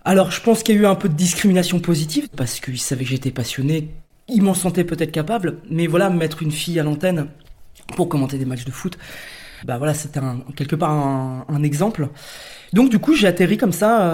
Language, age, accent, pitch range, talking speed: French, 20-39, French, 145-180 Hz, 215 wpm